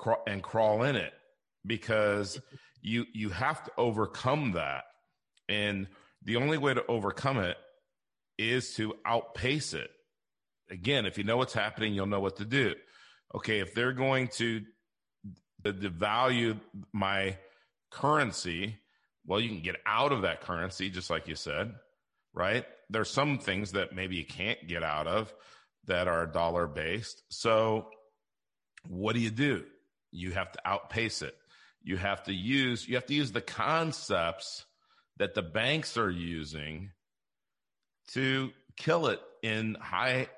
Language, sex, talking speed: English, male, 145 wpm